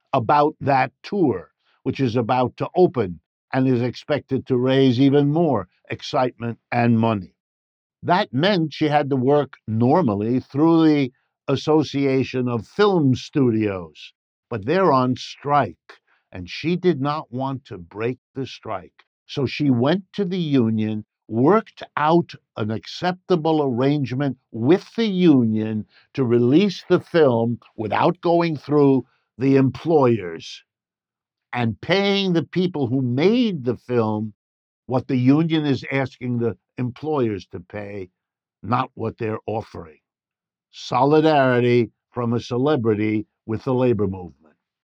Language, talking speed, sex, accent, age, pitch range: English, 130 wpm, male, American, 60-79, 120-150 Hz